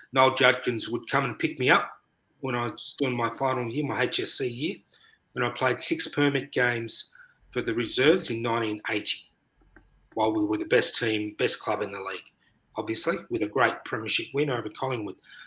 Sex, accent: male, Australian